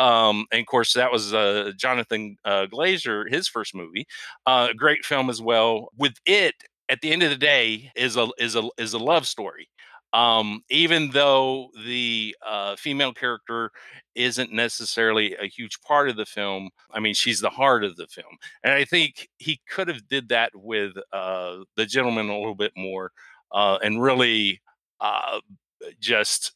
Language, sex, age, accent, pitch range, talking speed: English, male, 50-69, American, 105-140 Hz, 175 wpm